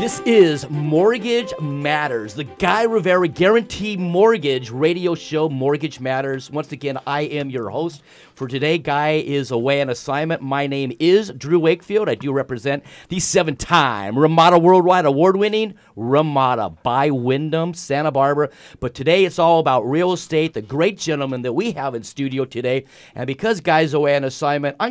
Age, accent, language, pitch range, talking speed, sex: 40-59, American, English, 135-165 Hz, 160 wpm, male